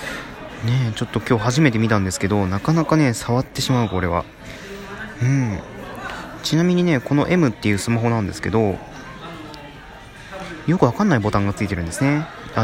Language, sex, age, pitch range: Japanese, male, 20-39, 105-145 Hz